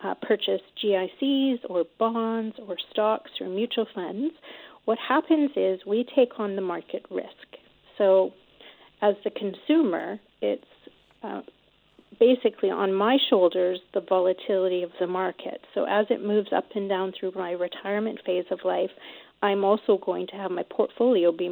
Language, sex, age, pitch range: English, female, 40-59, 190-225 Hz